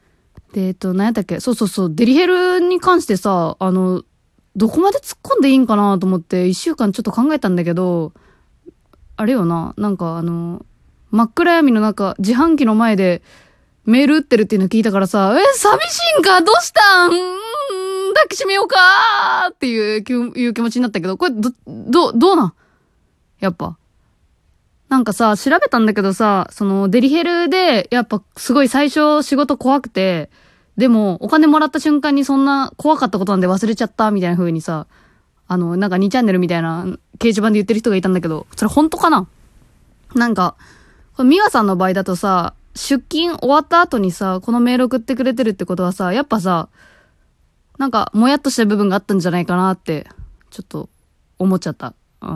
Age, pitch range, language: 20-39, 185-280 Hz, Japanese